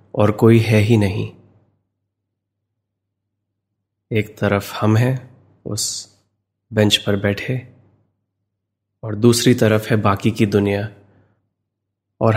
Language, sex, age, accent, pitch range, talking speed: Hindi, male, 20-39, native, 100-115 Hz, 100 wpm